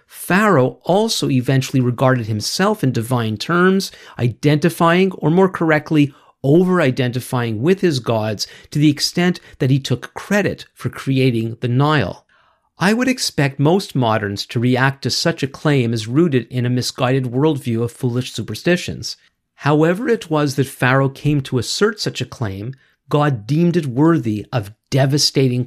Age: 50-69